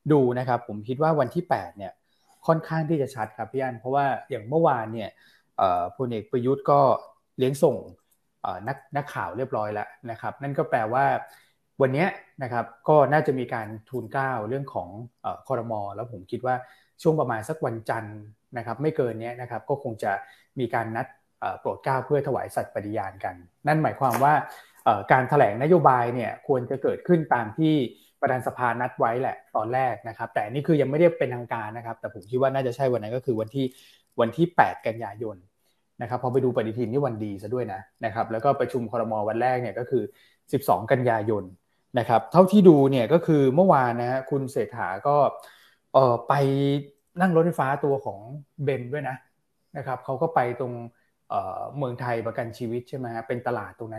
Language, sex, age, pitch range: Thai, male, 20-39, 115-140 Hz